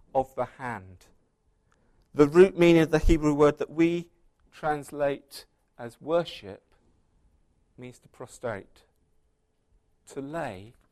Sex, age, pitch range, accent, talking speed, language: male, 40-59, 95-140 Hz, British, 105 wpm, English